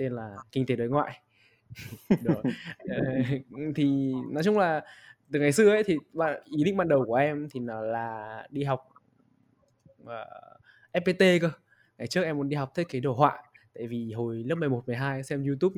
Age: 20-39